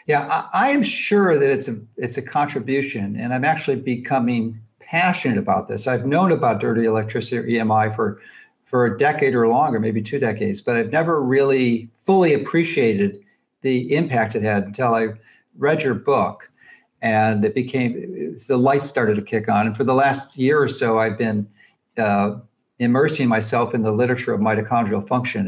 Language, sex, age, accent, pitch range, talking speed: English, male, 50-69, American, 110-140 Hz, 180 wpm